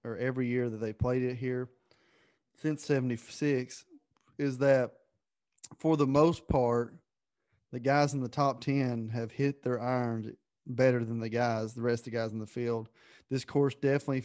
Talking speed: 175 wpm